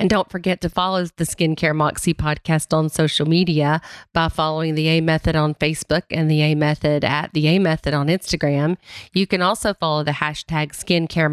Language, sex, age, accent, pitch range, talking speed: English, female, 40-59, American, 150-170 Hz, 190 wpm